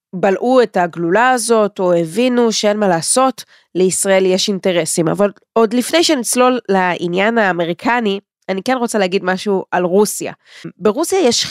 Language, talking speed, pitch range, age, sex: Hebrew, 140 wpm, 180-225 Hz, 20-39, female